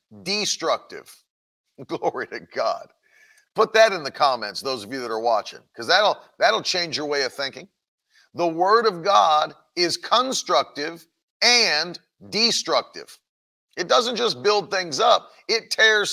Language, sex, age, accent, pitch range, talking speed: English, male, 40-59, American, 155-200 Hz, 145 wpm